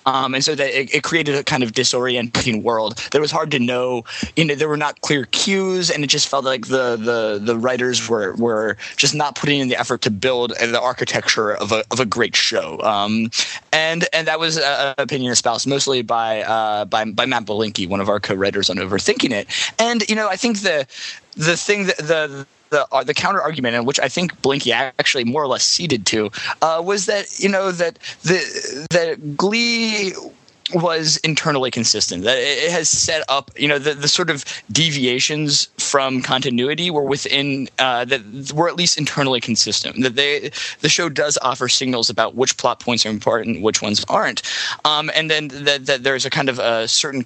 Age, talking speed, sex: 20-39, 210 wpm, male